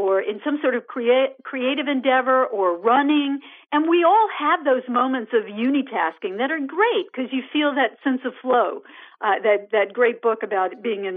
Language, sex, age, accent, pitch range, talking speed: English, female, 50-69, American, 235-325 Hz, 190 wpm